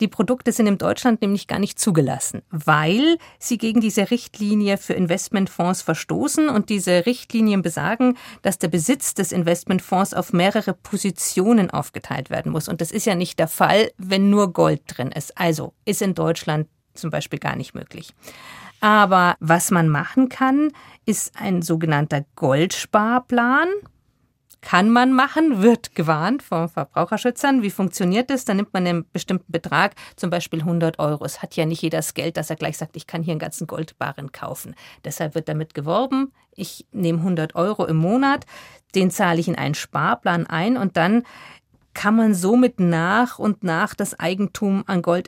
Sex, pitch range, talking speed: female, 165-215 Hz, 170 wpm